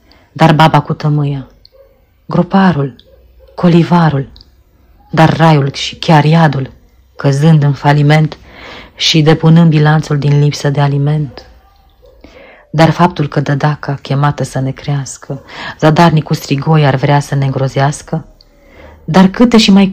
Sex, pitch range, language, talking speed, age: female, 135-160 Hz, Romanian, 125 wpm, 40-59